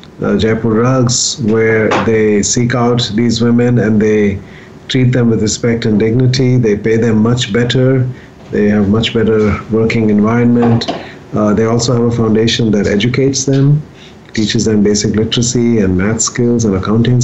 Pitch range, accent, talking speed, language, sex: 105-120 Hz, Indian, 160 wpm, English, male